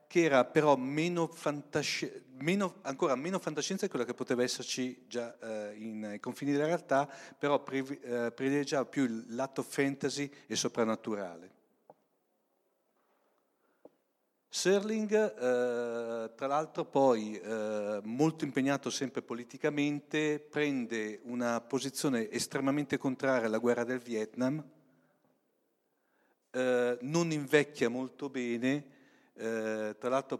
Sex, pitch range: male, 115-145 Hz